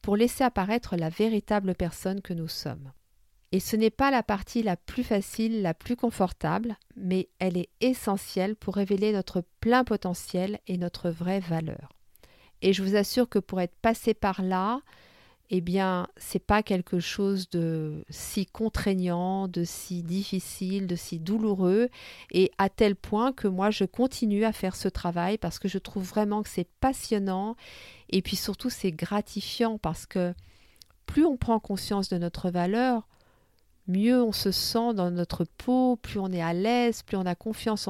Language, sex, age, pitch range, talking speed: French, female, 50-69, 180-220 Hz, 175 wpm